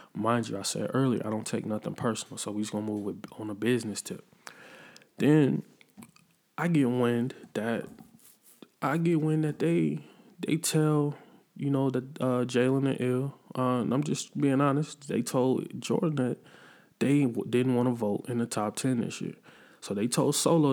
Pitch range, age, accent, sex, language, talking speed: 110-130 Hz, 20-39, American, male, English, 190 wpm